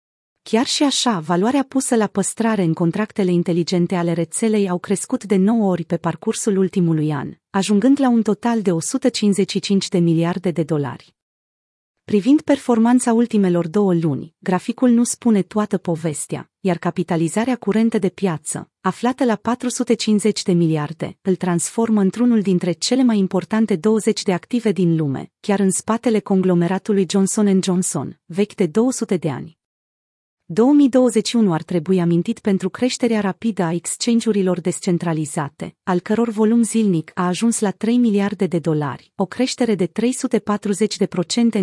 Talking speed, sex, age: 145 wpm, female, 30-49